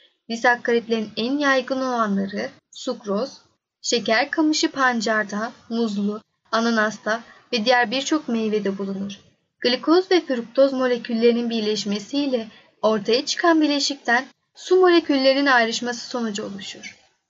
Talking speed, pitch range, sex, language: 95 wpm, 215-275 Hz, female, Turkish